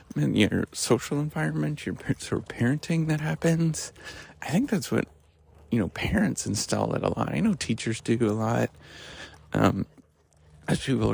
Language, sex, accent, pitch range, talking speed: English, male, American, 75-120 Hz, 155 wpm